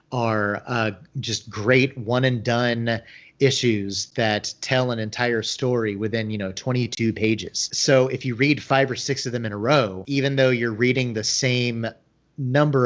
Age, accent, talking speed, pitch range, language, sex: 30-49, American, 165 wpm, 110-130 Hz, English, male